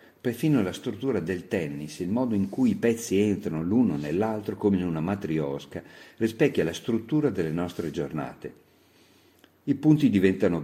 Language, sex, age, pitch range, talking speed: Italian, male, 50-69, 85-115 Hz, 150 wpm